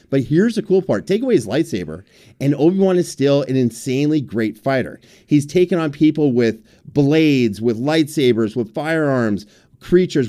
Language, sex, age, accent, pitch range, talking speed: English, male, 40-59, American, 130-170 Hz, 165 wpm